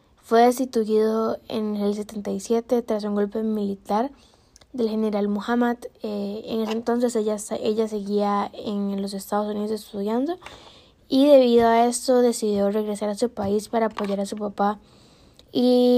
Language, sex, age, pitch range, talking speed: Spanish, female, 10-29, 205-230 Hz, 145 wpm